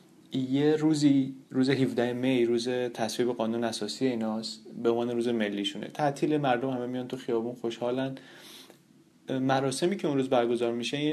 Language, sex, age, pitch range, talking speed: Persian, male, 30-49, 115-140 Hz, 145 wpm